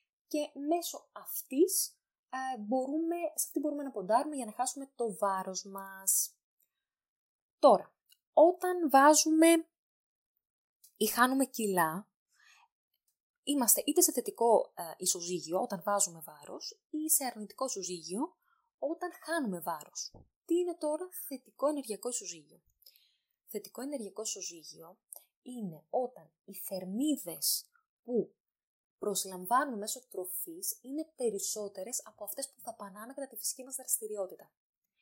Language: Greek